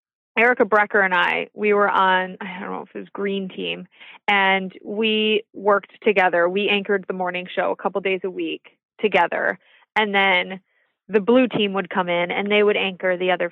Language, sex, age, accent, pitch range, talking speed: English, female, 20-39, American, 195-250 Hz, 195 wpm